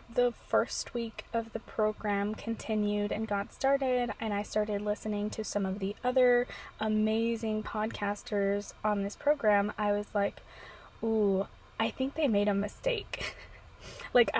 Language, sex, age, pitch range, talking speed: English, female, 20-39, 205-240 Hz, 145 wpm